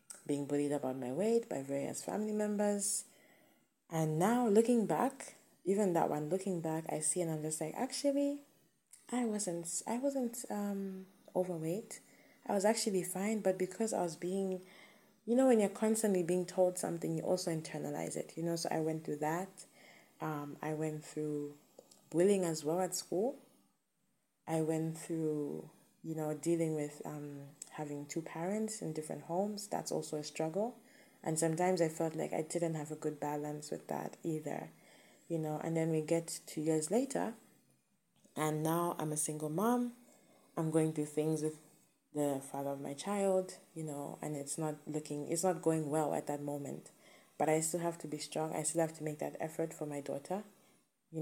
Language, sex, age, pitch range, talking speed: English, female, 20-39, 155-195 Hz, 185 wpm